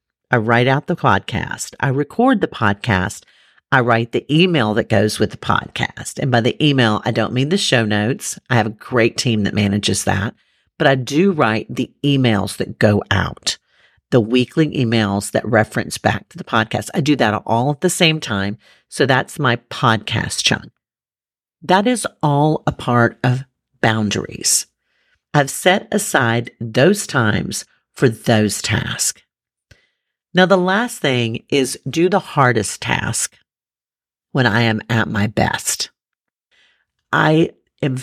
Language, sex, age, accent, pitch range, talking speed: English, female, 50-69, American, 110-155 Hz, 155 wpm